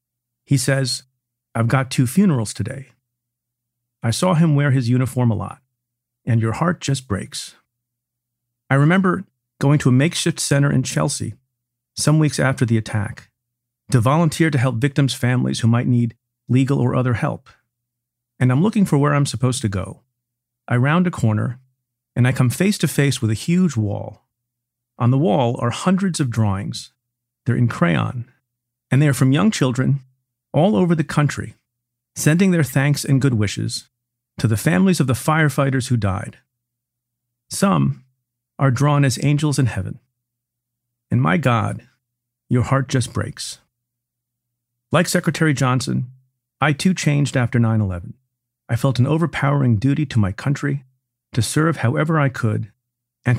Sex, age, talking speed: male, 40-59, 155 wpm